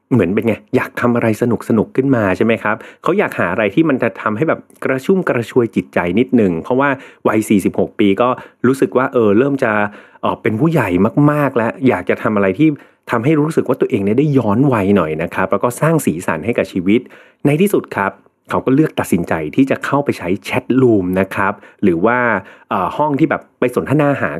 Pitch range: 100-135 Hz